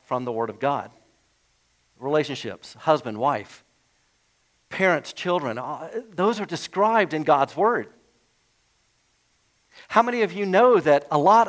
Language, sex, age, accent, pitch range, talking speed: English, male, 50-69, American, 135-195 Hz, 125 wpm